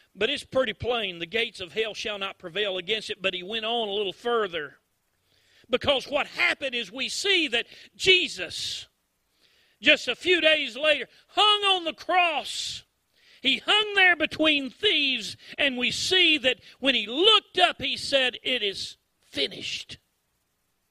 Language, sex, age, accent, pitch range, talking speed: English, male, 40-59, American, 225-305 Hz, 160 wpm